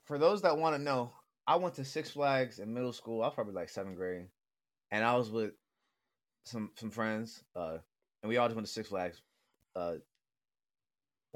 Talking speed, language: 195 wpm, English